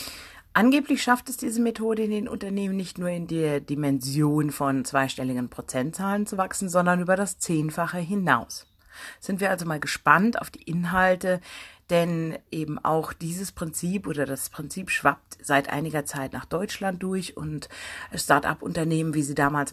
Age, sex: 40-59, female